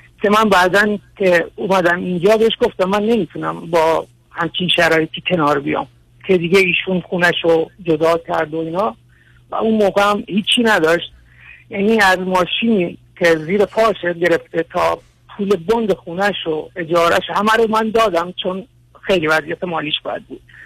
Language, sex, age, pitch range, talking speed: Persian, male, 60-79, 160-210 Hz, 150 wpm